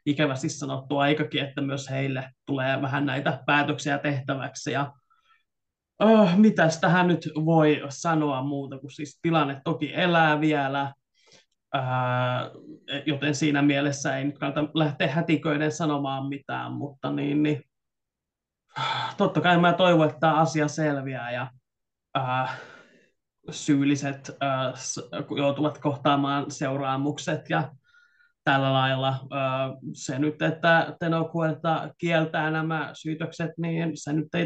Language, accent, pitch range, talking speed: Finnish, native, 140-160 Hz, 120 wpm